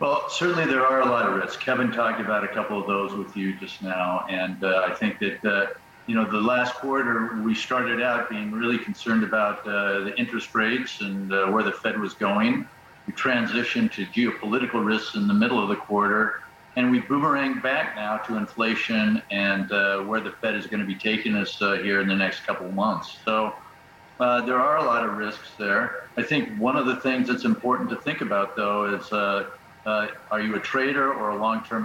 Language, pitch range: English, 100-120 Hz